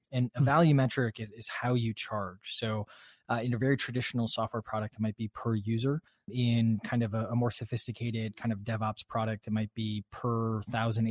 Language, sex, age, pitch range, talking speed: English, male, 20-39, 110-130 Hz, 205 wpm